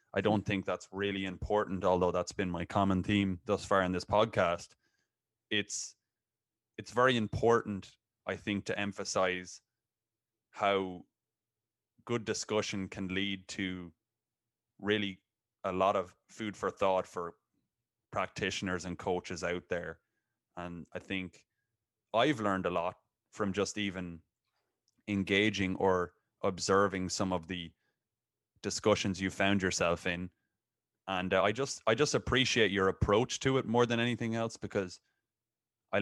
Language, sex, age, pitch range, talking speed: English, male, 20-39, 95-110 Hz, 135 wpm